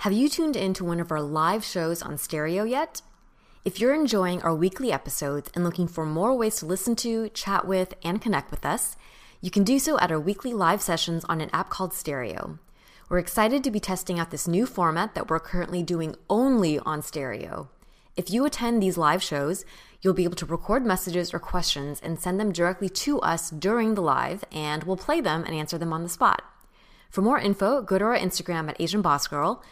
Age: 20-39